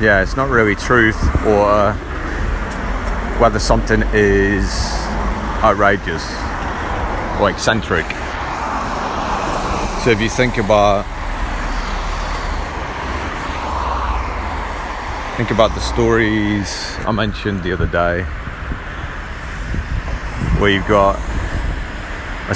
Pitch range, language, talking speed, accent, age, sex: 75-100 Hz, English, 80 wpm, British, 30-49, male